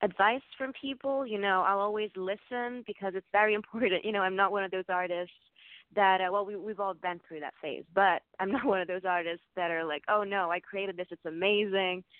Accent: American